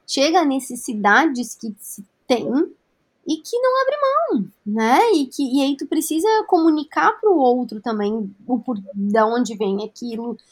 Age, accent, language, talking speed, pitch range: 20-39, Brazilian, Portuguese, 155 wpm, 210-275 Hz